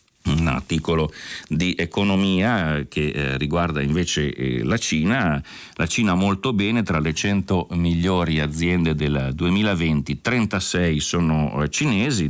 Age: 40-59